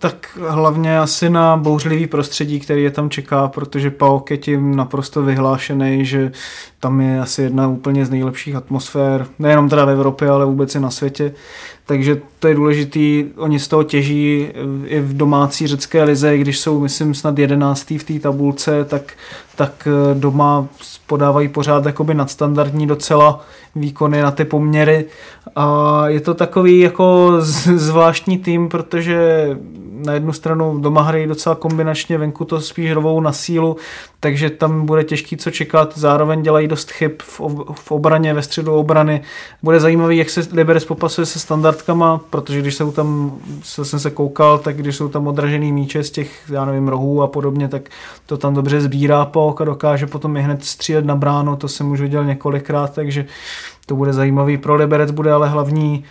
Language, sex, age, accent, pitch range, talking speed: Czech, male, 20-39, native, 140-155 Hz, 170 wpm